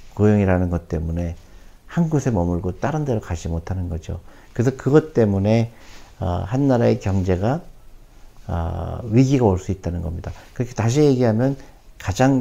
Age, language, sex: 50-69, Korean, male